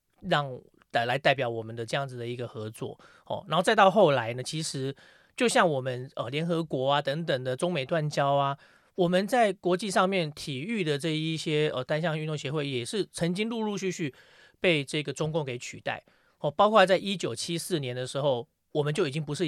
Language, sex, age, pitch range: Chinese, male, 30-49, 135-175 Hz